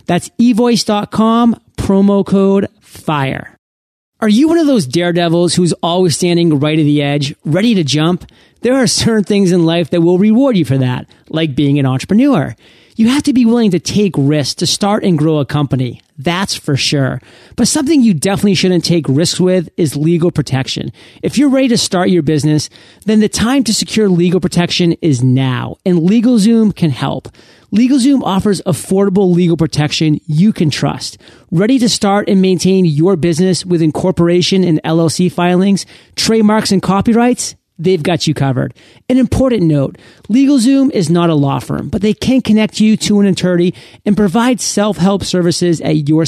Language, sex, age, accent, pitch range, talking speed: English, male, 40-59, American, 155-210 Hz, 175 wpm